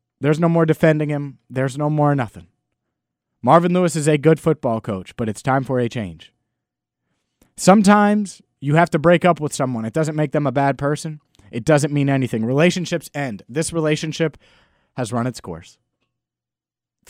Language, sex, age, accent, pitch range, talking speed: English, male, 30-49, American, 110-155 Hz, 175 wpm